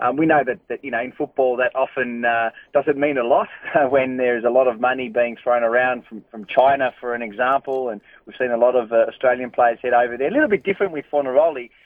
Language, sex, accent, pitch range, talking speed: English, male, Australian, 120-145 Hz, 250 wpm